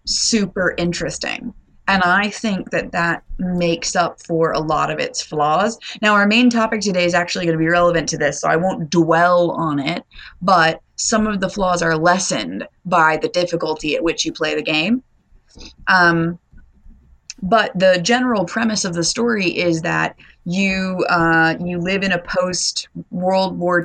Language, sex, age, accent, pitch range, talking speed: English, female, 30-49, American, 160-190 Hz, 170 wpm